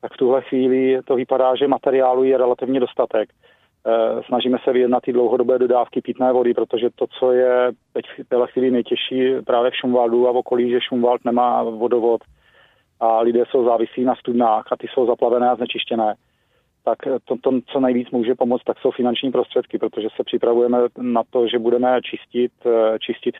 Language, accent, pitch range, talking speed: Czech, native, 115-125 Hz, 180 wpm